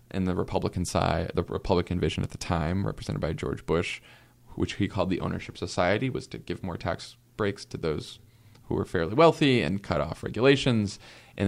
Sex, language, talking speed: male, English, 195 wpm